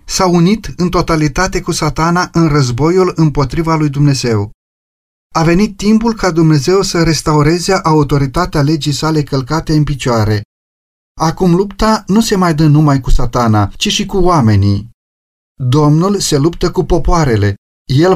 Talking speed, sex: 140 wpm, male